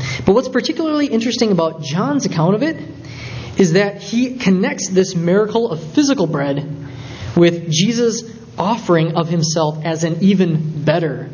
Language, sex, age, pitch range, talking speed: English, male, 20-39, 135-185 Hz, 145 wpm